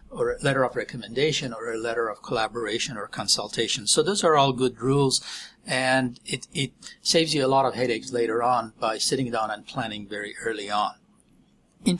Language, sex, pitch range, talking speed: English, male, 125-160 Hz, 190 wpm